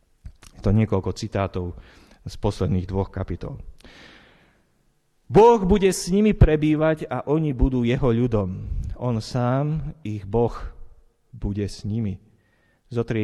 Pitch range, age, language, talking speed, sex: 95-125 Hz, 30-49, Slovak, 115 wpm, male